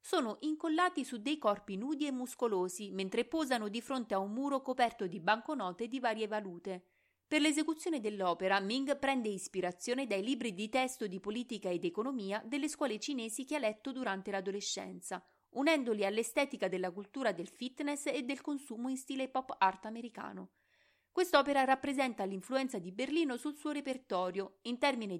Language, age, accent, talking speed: Italian, 30-49, native, 160 wpm